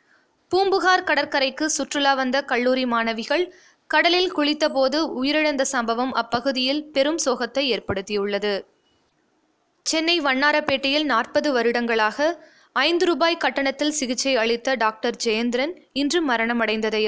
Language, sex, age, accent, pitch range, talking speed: Tamil, female, 20-39, native, 235-300 Hz, 95 wpm